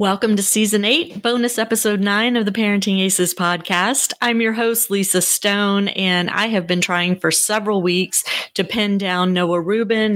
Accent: American